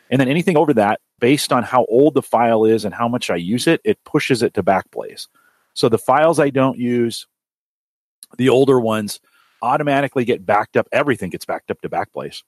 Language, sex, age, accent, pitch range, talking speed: English, male, 40-59, American, 100-135 Hz, 200 wpm